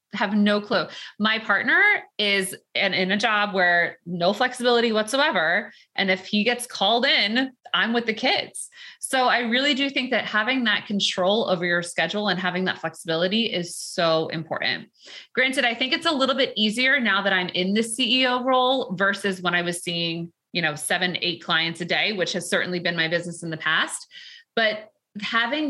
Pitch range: 180-240 Hz